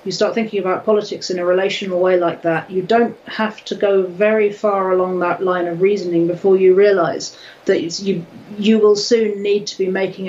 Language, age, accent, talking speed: English, 40-59, British, 205 wpm